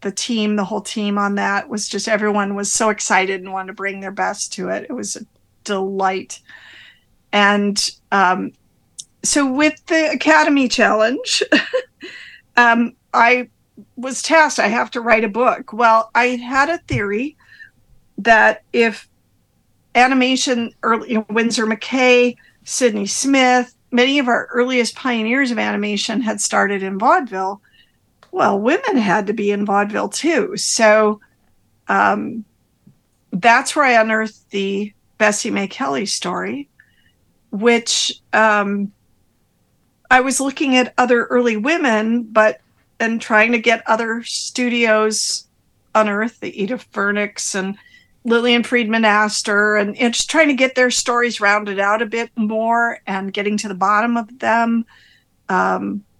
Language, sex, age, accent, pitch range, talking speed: English, female, 50-69, American, 205-245 Hz, 140 wpm